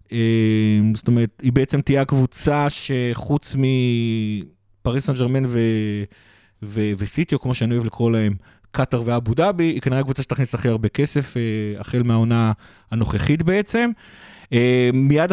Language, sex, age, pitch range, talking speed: Hebrew, male, 30-49, 115-140 Hz, 130 wpm